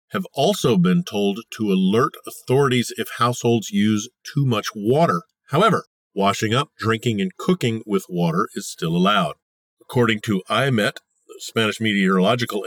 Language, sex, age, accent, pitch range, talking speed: English, male, 50-69, American, 105-170 Hz, 140 wpm